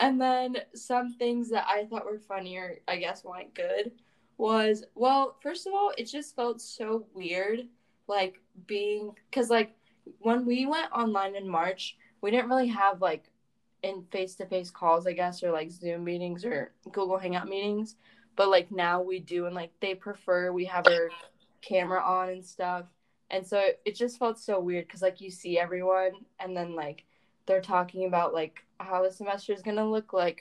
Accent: American